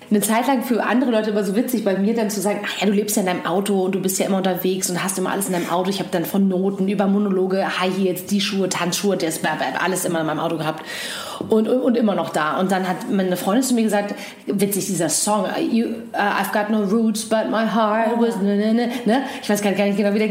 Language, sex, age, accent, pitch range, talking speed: German, female, 30-49, German, 185-225 Hz, 260 wpm